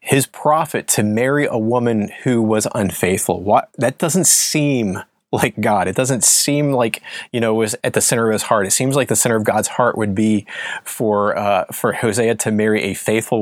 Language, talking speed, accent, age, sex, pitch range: English, 210 wpm, American, 30-49, male, 105-125 Hz